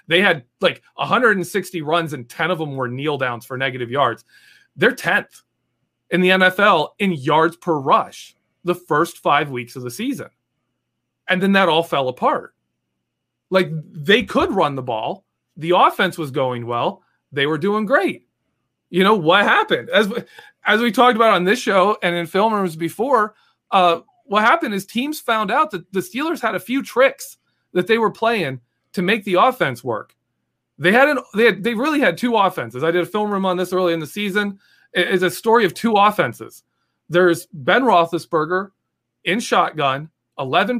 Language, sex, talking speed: English, male, 185 wpm